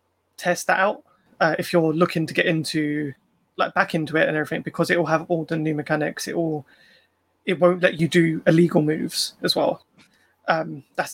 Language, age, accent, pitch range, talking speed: English, 20-39, British, 155-180 Hz, 200 wpm